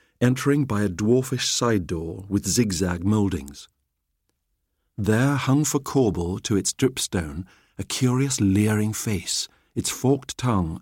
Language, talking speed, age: English, 130 wpm, 50-69